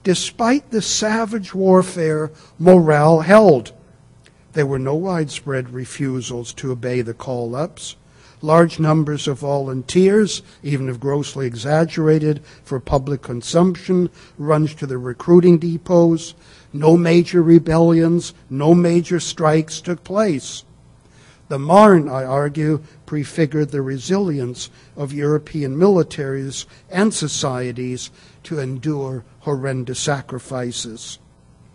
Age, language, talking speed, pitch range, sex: 60-79, English, 105 wpm, 135-175 Hz, male